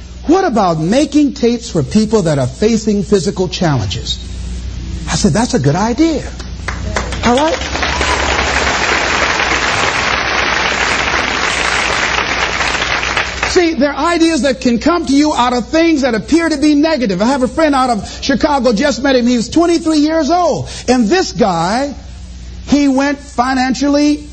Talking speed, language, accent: 140 wpm, English, American